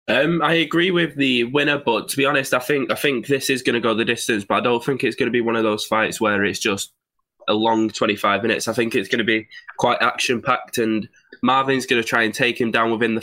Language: English